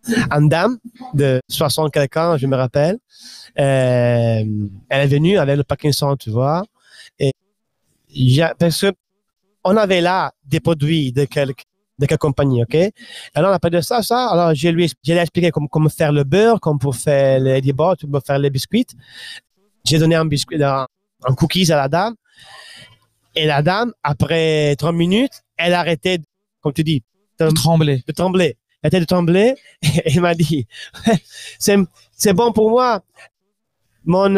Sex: male